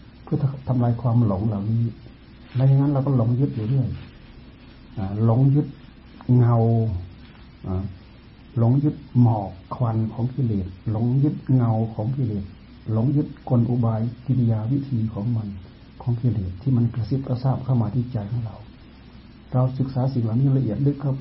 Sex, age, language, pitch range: male, 60-79, Thai, 105-130 Hz